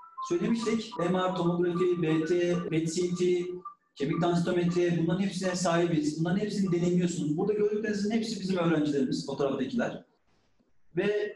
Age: 40-59